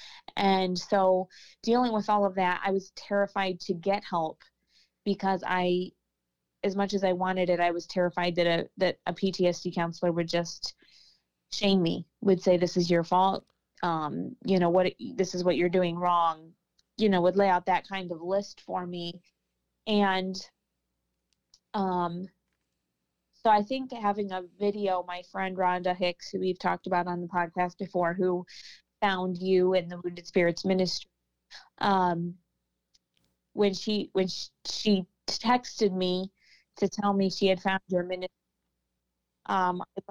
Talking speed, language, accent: 155 wpm, English, American